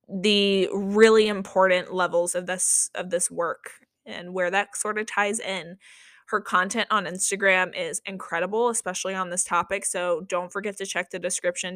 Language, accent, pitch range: English, American, 190-235 Hz